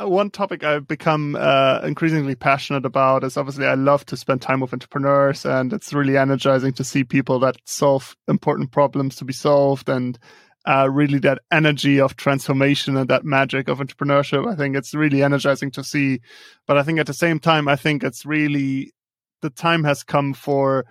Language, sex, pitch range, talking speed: English, male, 135-150 Hz, 190 wpm